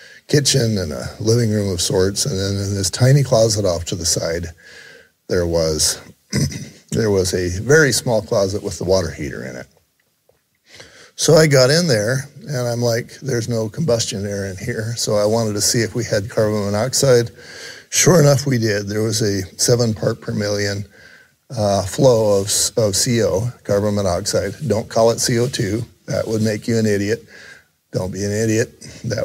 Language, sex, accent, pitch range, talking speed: English, male, American, 95-120 Hz, 180 wpm